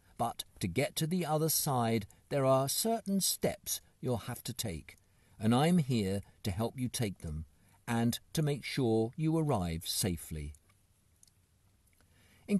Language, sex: English, male